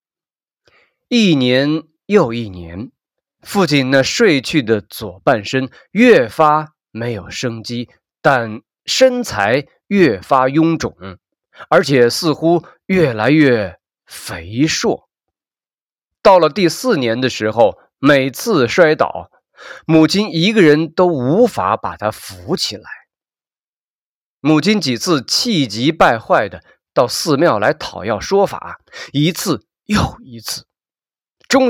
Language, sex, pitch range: Chinese, male, 115-170 Hz